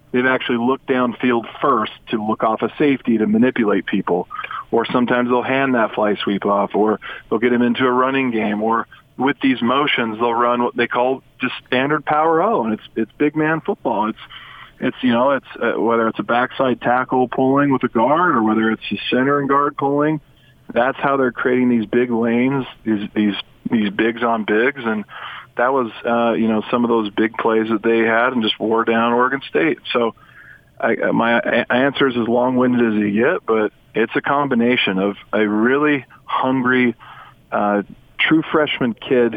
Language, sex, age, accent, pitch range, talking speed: English, male, 40-59, American, 110-130 Hz, 190 wpm